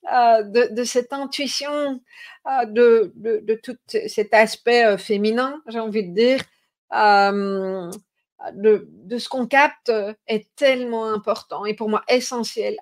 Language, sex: French, female